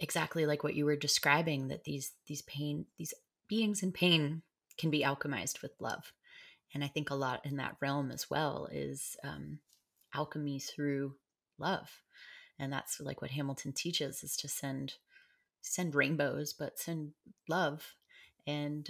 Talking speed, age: 155 wpm, 30-49